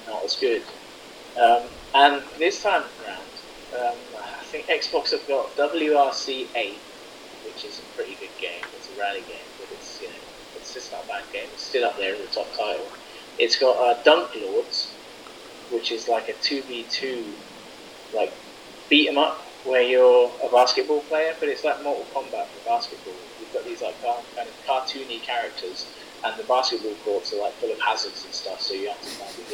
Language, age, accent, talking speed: English, 20-39, British, 190 wpm